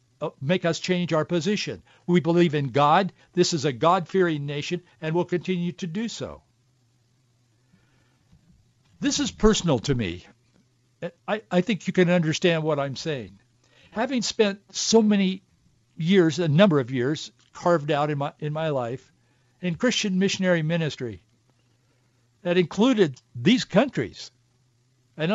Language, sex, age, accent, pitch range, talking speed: English, male, 60-79, American, 125-195 Hz, 135 wpm